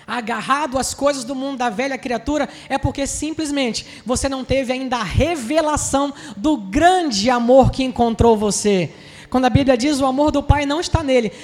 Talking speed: 180 wpm